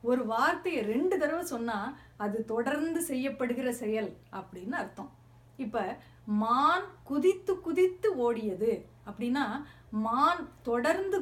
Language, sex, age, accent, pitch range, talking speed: Tamil, female, 30-49, native, 215-300 Hz, 100 wpm